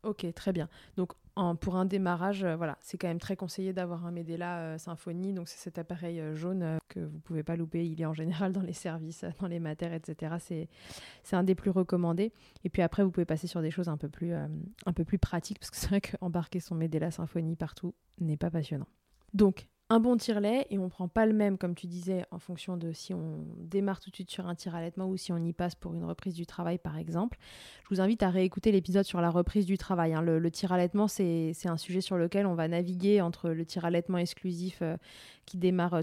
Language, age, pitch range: French, 20-39, 170-190 Hz